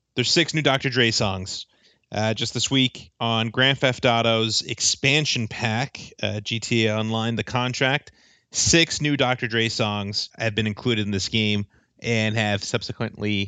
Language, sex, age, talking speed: English, male, 30-49, 155 wpm